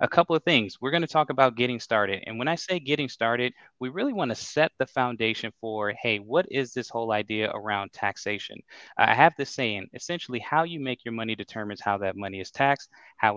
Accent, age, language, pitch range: American, 20-39, English, 105-125 Hz